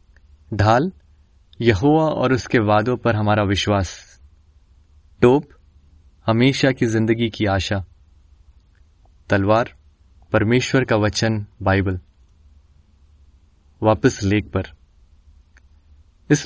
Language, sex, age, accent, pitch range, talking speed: Hindi, male, 20-39, native, 75-125 Hz, 85 wpm